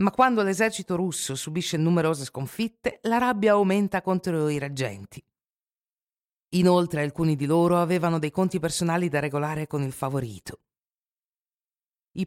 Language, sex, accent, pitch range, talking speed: Italian, female, native, 135-195 Hz, 130 wpm